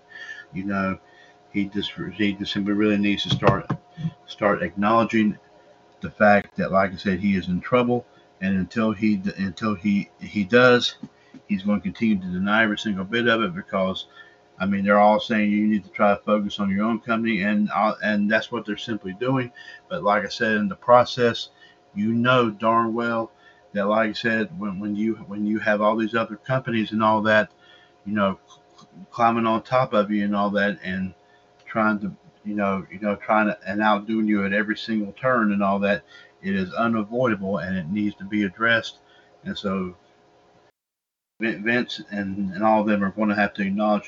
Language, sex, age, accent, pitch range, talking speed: English, male, 50-69, American, 100-115 Hz, 195 wpm